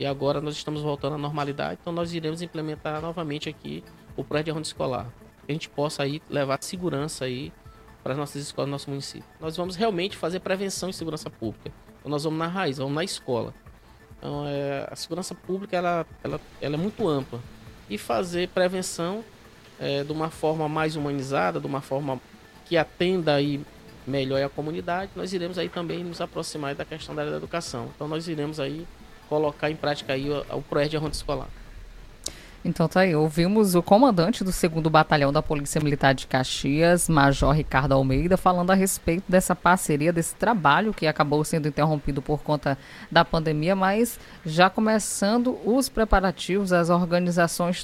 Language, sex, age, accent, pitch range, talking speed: Portuguese, male, 20-39, Brazilian, 145-180 Hz, 175 wpm